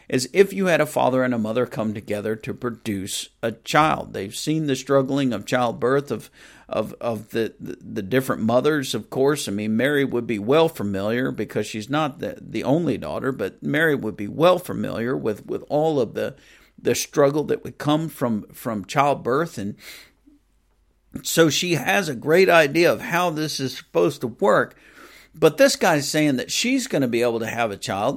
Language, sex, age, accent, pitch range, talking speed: English, male, 50-69, American, 110-160 Hz, 195 wpm